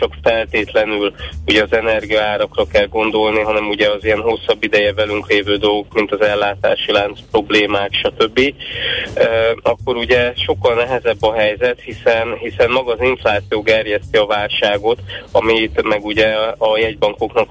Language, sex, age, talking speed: Hungarian, male, 20-39, 145 wpm